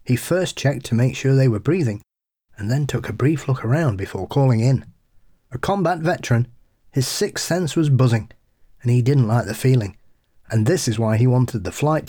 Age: 30-49